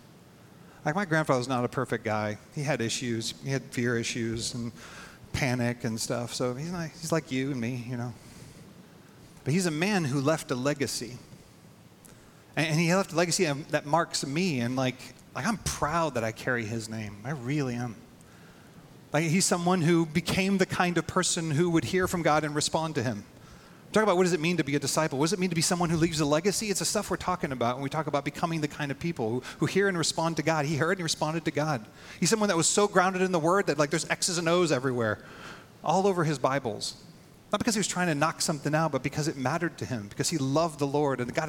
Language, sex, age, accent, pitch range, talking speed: English, male, 40-59, American, 130-170 Hz, 240 wpm